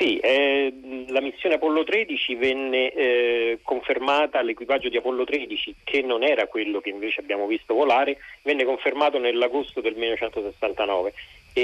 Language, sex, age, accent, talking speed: Italian, male, 40-59, native, 140 wpm